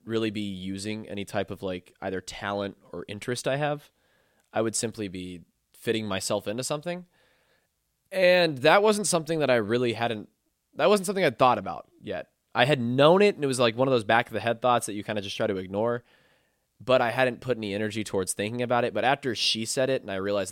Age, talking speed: 20-39, 230 wpm